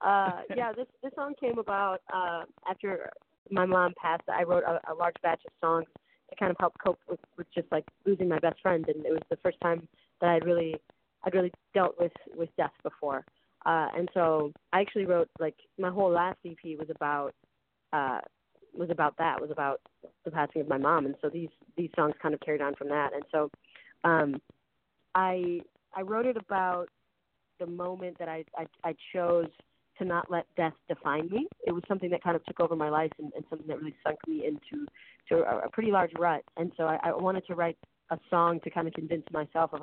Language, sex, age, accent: English, female, 20-39, American